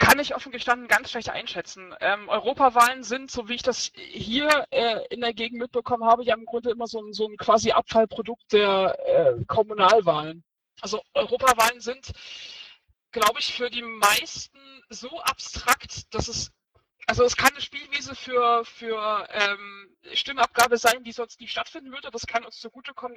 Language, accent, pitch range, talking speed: German, German, 200-245 Hz, 170 wpm